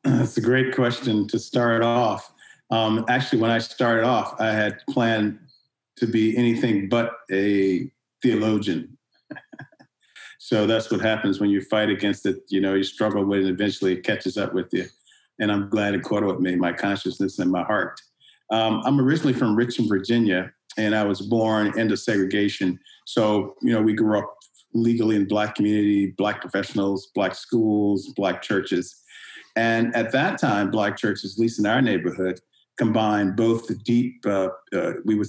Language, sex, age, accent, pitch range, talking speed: English, male, 50-69, American, 100-115 Hz, 175 wpm